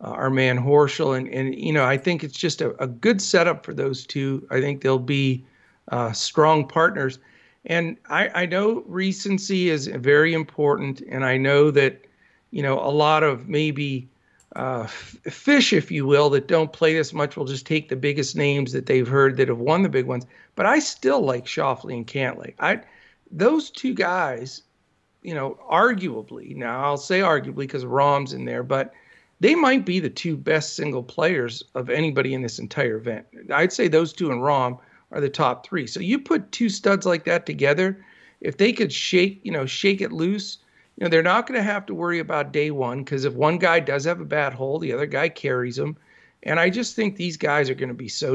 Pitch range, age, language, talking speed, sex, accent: 135-175 Hz, 50-69, English, 210 wpm, male, American